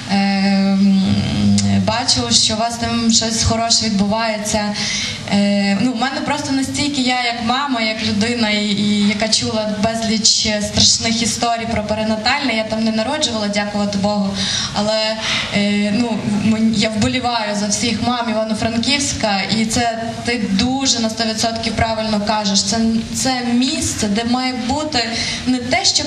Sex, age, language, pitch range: female, 20-39, Ukrainian, 210-245 Hz